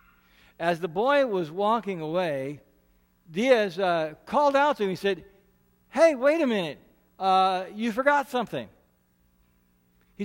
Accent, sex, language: American, male, English